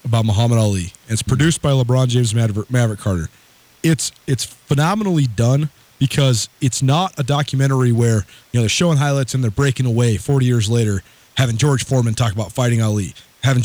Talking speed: 180 wpm